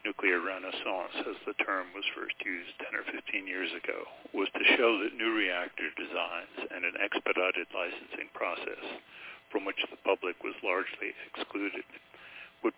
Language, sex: English, male